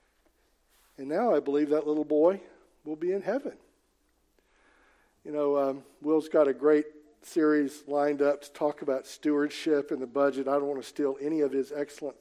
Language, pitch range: English, 140-180 Hz